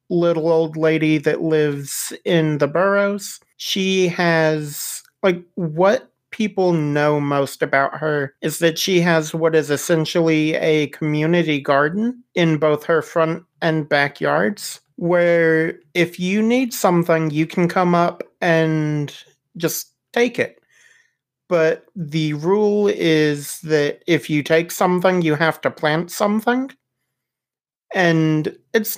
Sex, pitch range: male, 150-175 Hz